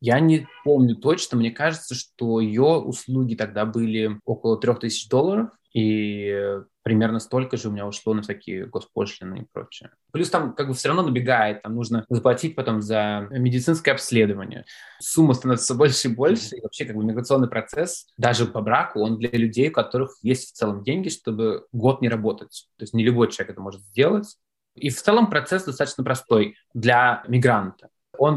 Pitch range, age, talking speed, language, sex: 110-135 Hz, 20-39, 180 wpm, Russian, male